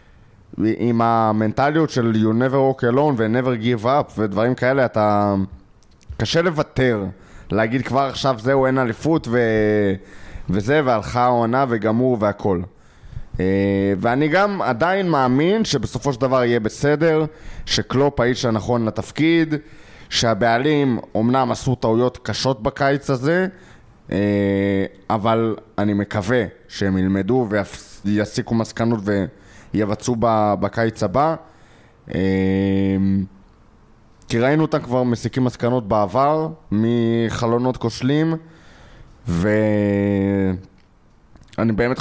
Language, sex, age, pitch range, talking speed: Hebrew, male, 20-39, 105-130 Hz, 100 wpm